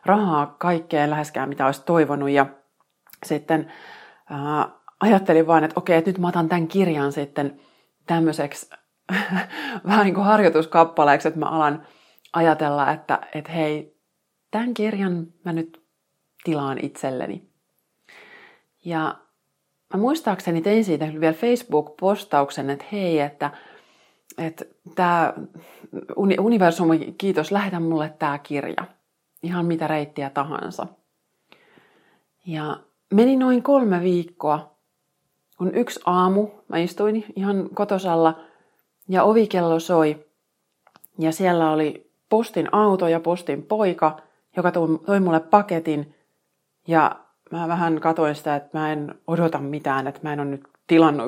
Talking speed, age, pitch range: 120 wpm, 30-49, 150-190 Hz